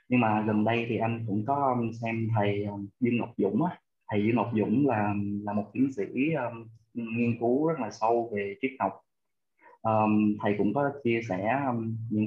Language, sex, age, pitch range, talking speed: Vietnamese, male, 20-39, 105-130 Hz, 195 wpm